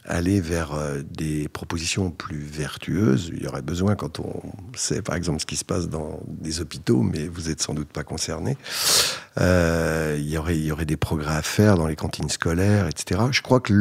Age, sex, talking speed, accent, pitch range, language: 60-79, male, 210 wpm, French, 80-105 Hz, French